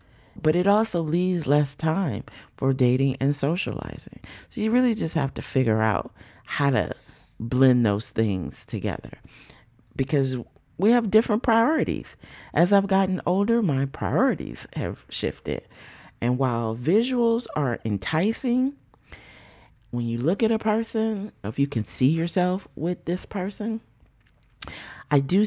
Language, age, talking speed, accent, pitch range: English, 40-59, 135 wpm, American, 115-180 Hz